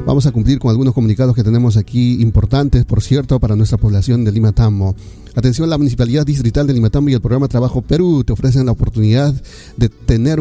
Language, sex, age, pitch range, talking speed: Spanish, male, 40-59, 110-140 Hz, 195 wpm